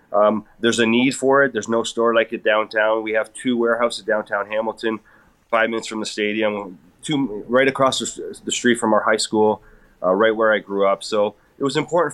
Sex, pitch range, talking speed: male, 110-125 Hz, 210 wpm